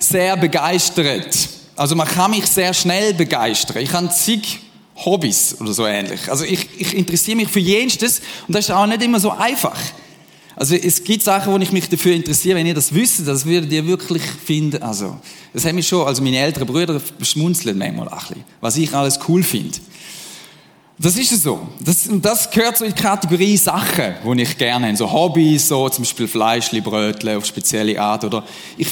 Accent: German